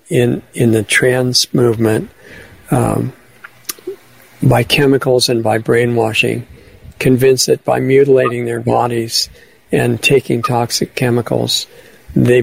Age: 50-69